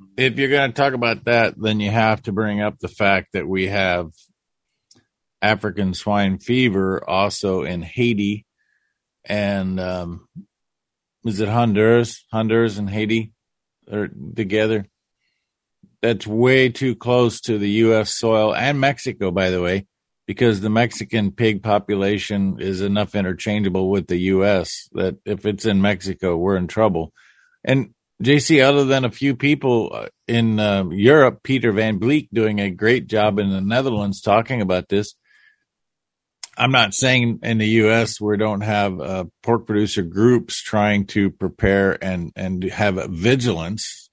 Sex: male